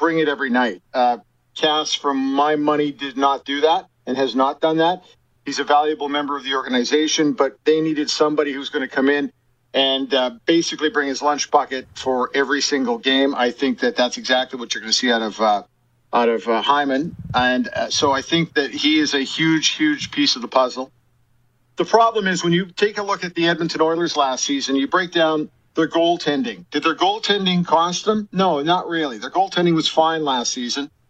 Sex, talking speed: male, 210 wpm